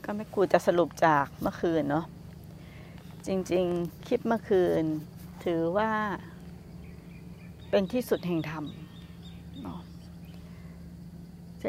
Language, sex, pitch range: Thai, female, 170-235 Hz